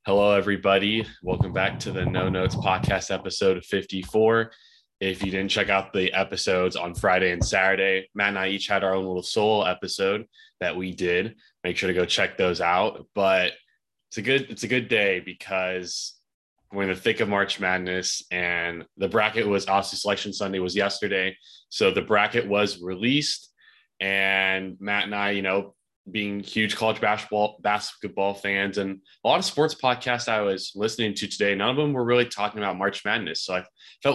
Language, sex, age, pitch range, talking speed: English, male, 20-39, 95-115 Hz, 190 wpm